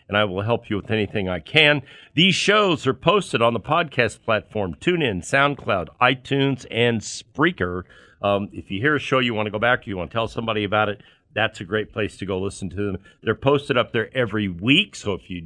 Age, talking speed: 50-69, 225 wpm